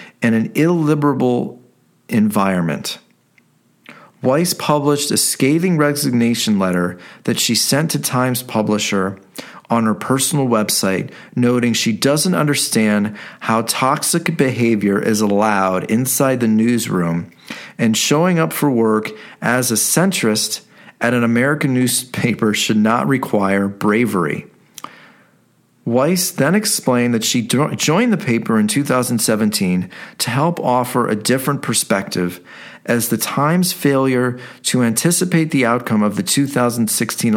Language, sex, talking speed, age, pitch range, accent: English, male, 120 wpm, 40-59, 110-145 Hz, American